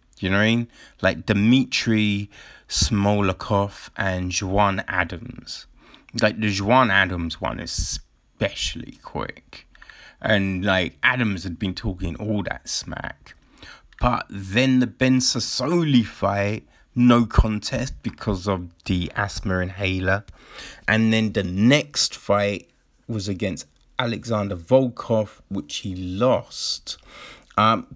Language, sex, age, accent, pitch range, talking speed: English, male, 30-49, British, 95-125 Hz, 115 wpm